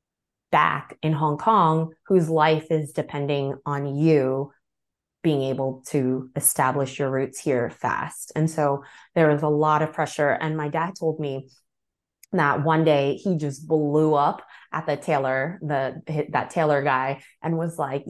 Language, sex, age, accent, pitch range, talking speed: English, female, 20-39, American, 140-165 Hz, 160 wpm